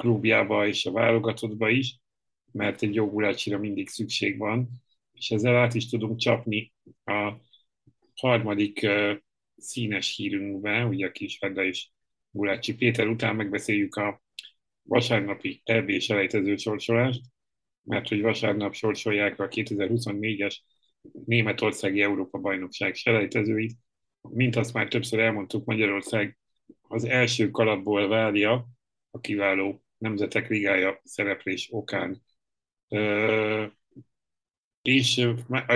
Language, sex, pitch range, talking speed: Hungarian, male, 100-115 Hz, 105 wpm